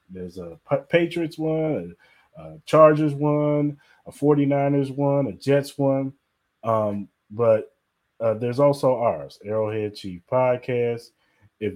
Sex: male